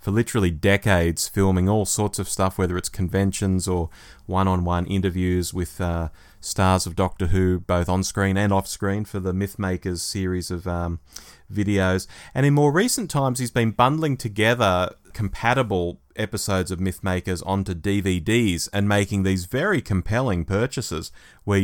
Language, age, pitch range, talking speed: English, 30-49, 90-105 Hz, 155 wpm